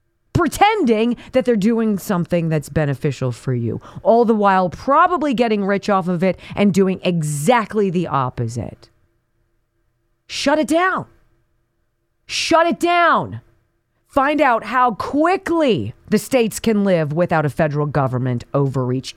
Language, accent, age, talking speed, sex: English, American, 40-59, 130 wpm, female